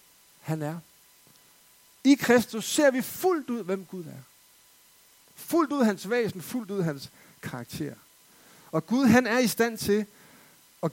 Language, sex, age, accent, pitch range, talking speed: Danish, male, 60-79, native, 170-240 Hz, 150 wpm